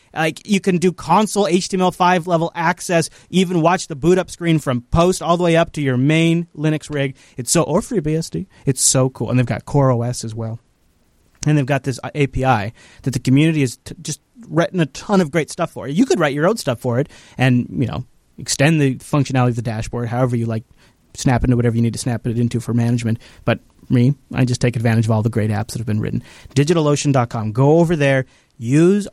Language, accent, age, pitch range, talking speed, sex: English, American, 30-49, 125-160 Hz, 225 wpm, male